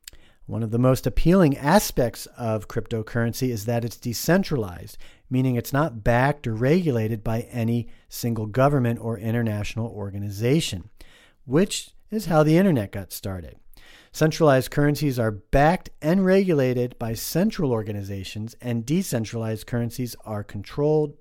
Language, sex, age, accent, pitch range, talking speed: English, male, 40-59, American, 115-155 Hz, 130 wpm